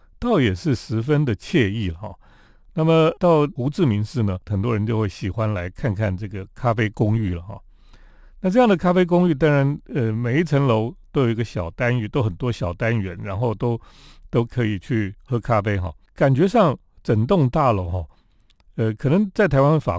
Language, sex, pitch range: Chinese, male, 105-145 Hz